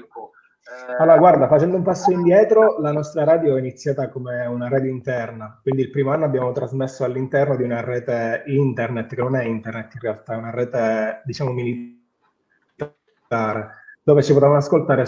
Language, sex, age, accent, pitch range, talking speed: Italian, male, 20-39, native, 120-150 Hz, 165 wpm